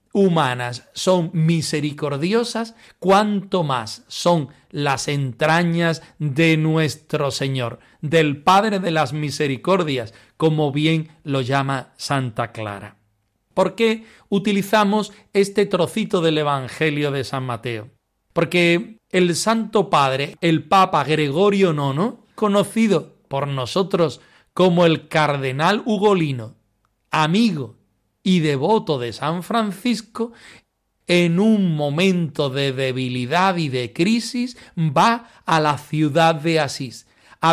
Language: Spanish